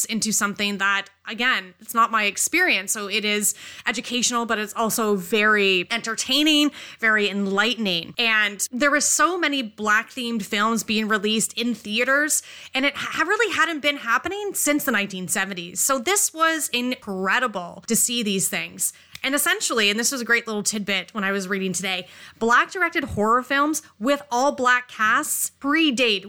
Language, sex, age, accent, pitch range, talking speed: English, female, 30-49, American, 205-265 Hz, 160 wpm